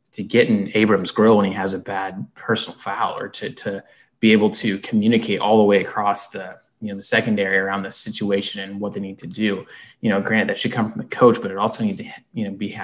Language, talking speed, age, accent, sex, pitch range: English, 255 wpm, 20-39, American, male, 100-110 Hz